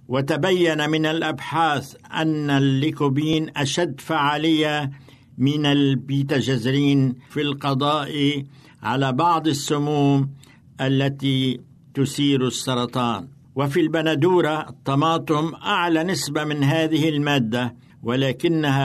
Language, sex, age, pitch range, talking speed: Arabic, male, 60-79, 135-160 Hz, 85 wpm